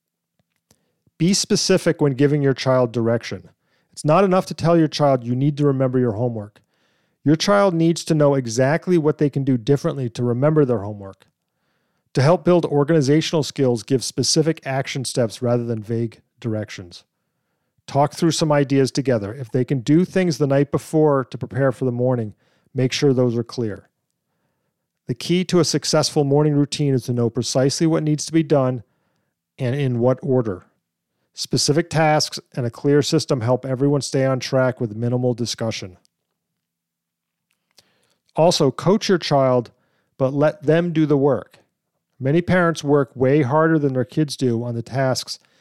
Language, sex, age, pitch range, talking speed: English, male, 40-59, 125-155 Hz, 165 wpm